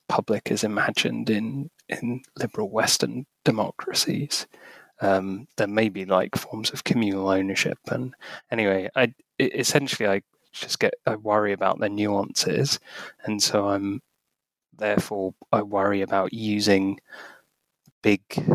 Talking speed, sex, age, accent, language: 125 wpm, male, 20-39, British, English